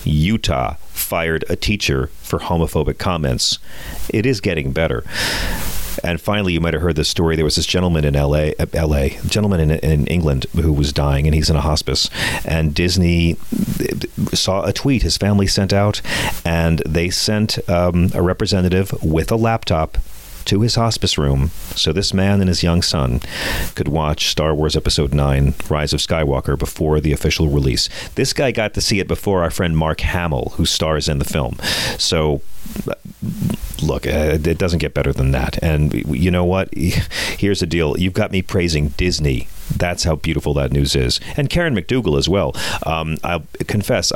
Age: 40-59